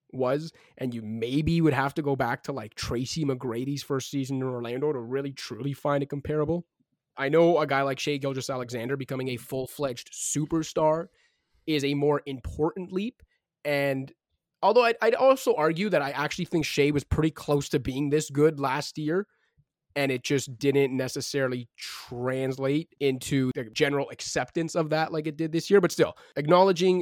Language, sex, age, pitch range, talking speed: English, male, 20-39, 130-155 Hz, 175 wpm